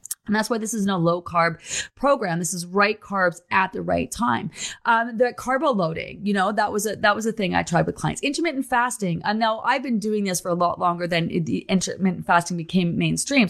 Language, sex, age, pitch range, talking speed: English, female, 30-49, 175-220 Hz, 235 wpm